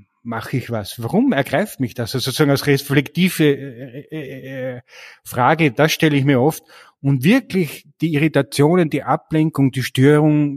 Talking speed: 140 wpm